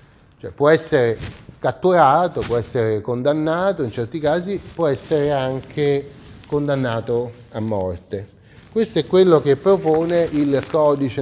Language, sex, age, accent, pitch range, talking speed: Italian, male, 30-49, native, 125-160 Hz, 125 wpm